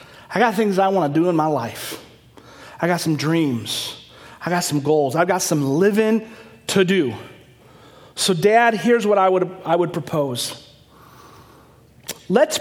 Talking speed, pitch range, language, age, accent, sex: 160 wpm, 130-205 Hz, English, 30-49, American, male